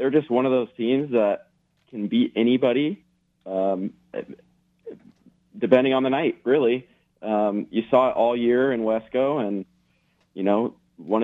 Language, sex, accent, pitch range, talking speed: English, male, American, 100-125 Hz, 150 wpm